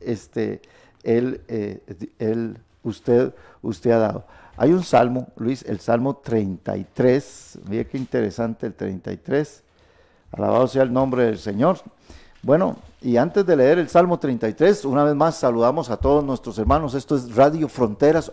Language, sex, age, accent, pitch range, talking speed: Spanish, male, 50-69, Mexican, 115-145 Hz, 150 wpm